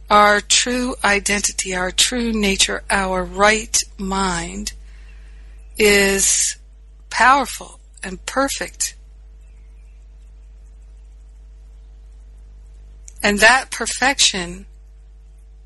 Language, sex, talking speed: English, female, 60 wpm